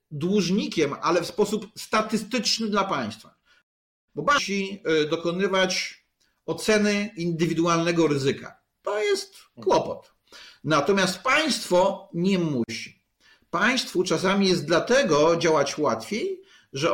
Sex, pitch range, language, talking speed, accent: male, 160-205 Hz, Polish, 95 wpm, native